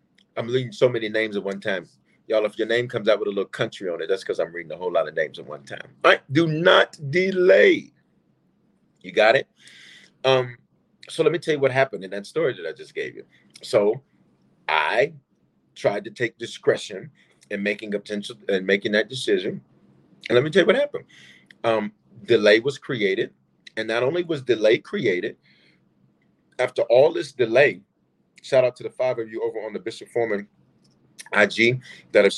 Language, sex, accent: English, male, American